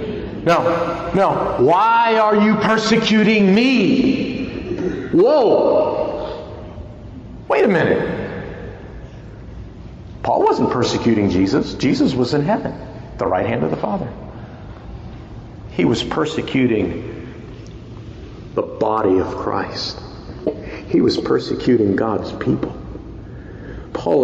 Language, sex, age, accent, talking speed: English, male, 50-69, American, 95 wpm